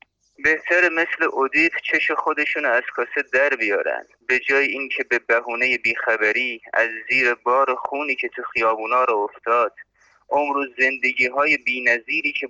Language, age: Persian, 30-49